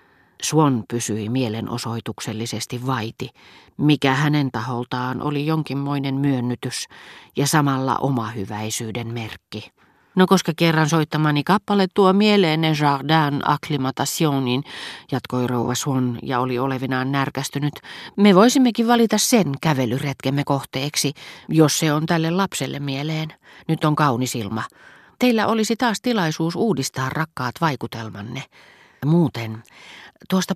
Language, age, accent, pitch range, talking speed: Finnish, 40-59, native, 125-160 Hz, 110 wpm